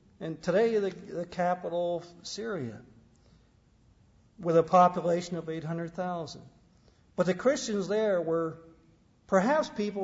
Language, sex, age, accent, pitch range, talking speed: English, male, 50-69, American, 165-210 Hz, 115 wpm